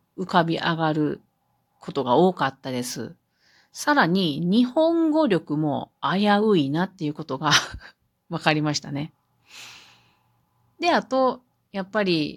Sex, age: female, 40-59